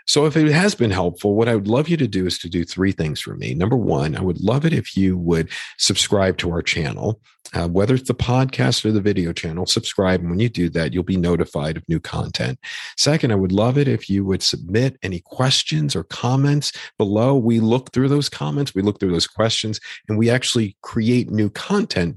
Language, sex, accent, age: English, male, American, 50-69